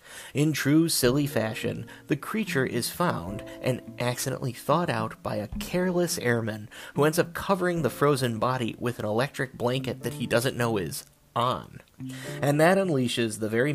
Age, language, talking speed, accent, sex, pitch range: 30-49, English, 165 wpm, American, male, 115-150 Hz